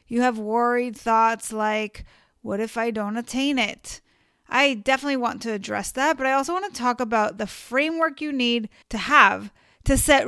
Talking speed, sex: 180 wpm, female